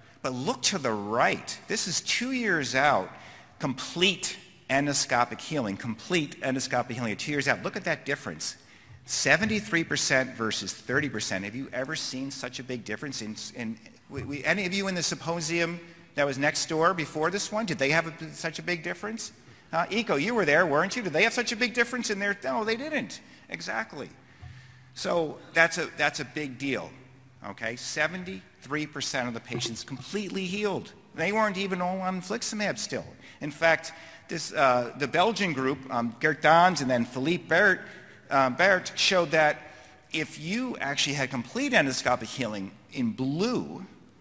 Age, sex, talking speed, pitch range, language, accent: 50-69, male, 170 wpm, 125-175 Hz, English, American